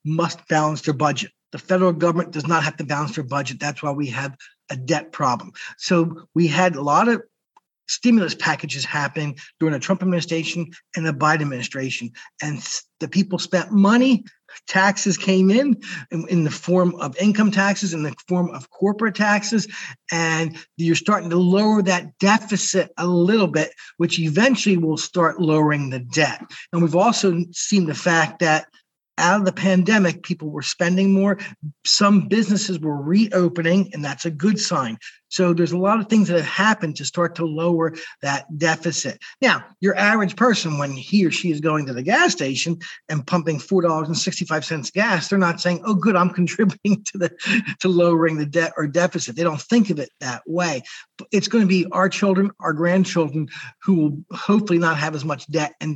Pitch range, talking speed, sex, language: 155-195 Hz, 180 wpm, male, English